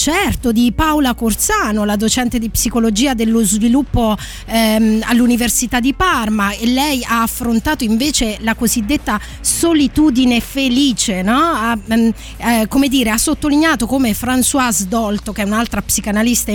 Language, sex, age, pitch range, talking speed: Italian, female, 20-39, 215-265 Hz, 140 wpm